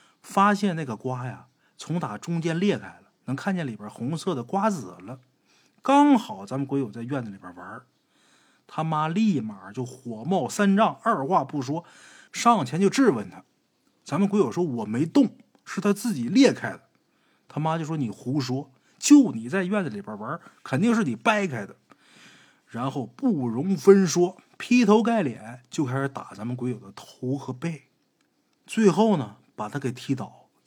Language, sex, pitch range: Chinese, male, 130-200 Hz